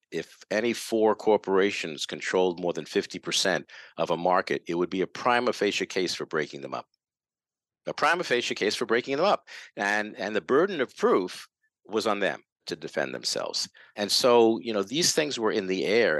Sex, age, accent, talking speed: male, 50-69, American, 195 wpm